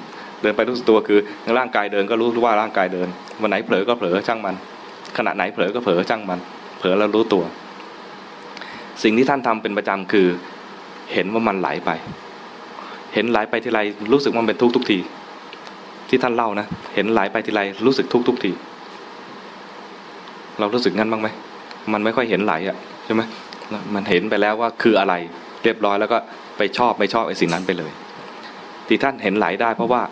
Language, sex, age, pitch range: English, male, 20-39, 95-115 Hz